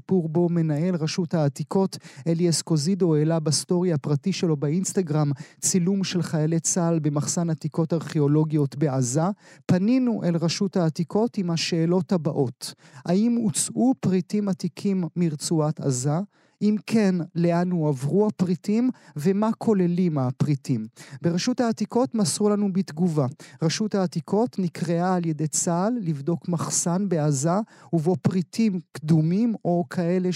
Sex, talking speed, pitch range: male, 120 wpm, 155-190 Hz